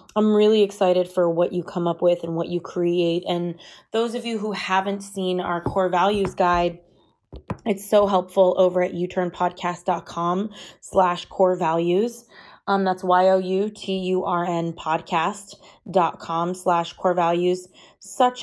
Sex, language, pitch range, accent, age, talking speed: female, English, 175-200 Hz, American, 20-39, 115 wpm